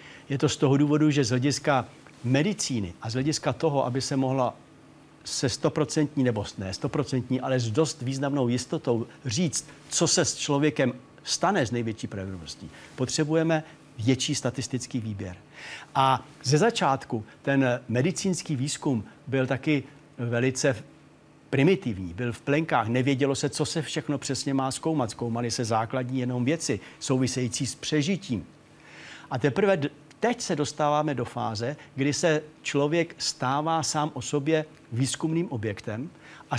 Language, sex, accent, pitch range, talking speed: Czech, male, native, 125-150 Hz, 140 wpm